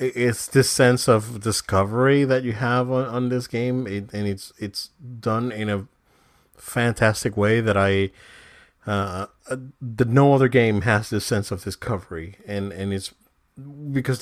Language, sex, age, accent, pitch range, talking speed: English, male, 30-49, American, 100-125 Hz, 155 wpm